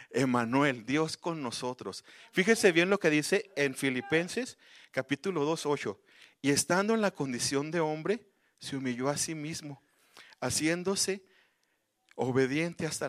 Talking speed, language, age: 135 wpm, Spanish, 40-59